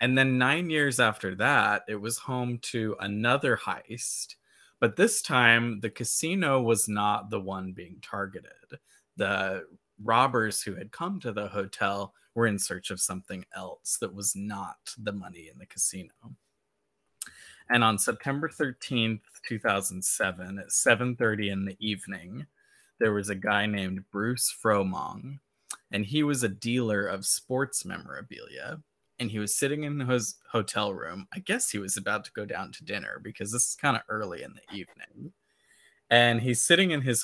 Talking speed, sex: 165 wpm, male